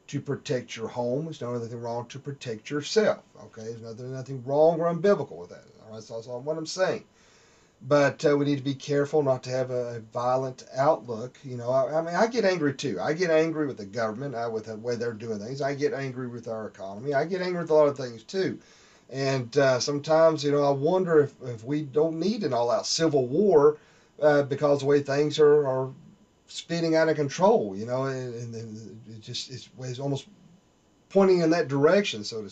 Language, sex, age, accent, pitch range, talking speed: English, male, 40-59, American, 120-150 Hz, 220 wpm